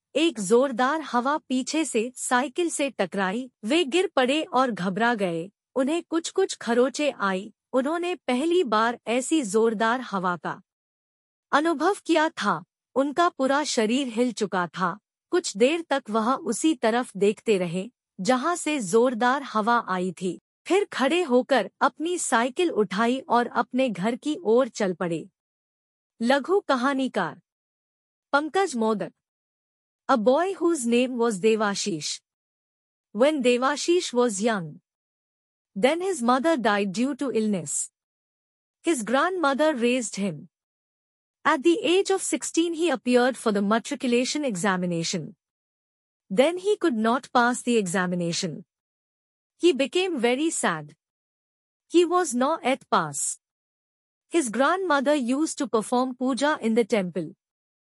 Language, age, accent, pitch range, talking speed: English, 50-69, Indian, 220-300 Hz, 120 wpm